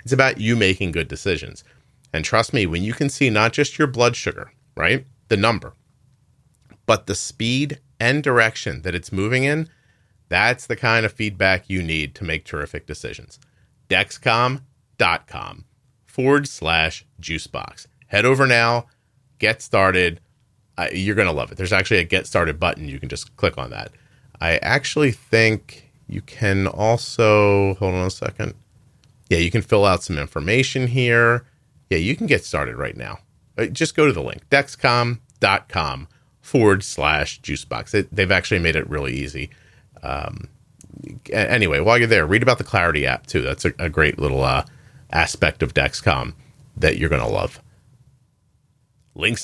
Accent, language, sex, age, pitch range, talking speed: American, English, male, 30-49, 95-130 Hz, 160 wpm